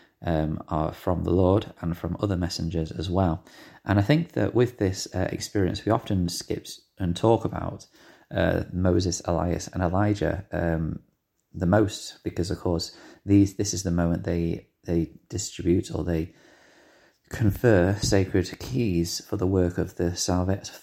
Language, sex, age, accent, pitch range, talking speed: English, male, 30-49, British, 85-110 Hz, 160 wpm